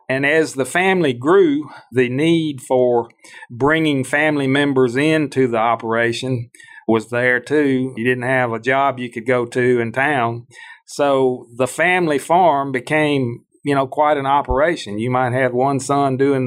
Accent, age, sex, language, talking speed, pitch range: American, 40-59, male, English, 160 wpm, 120-145 Hz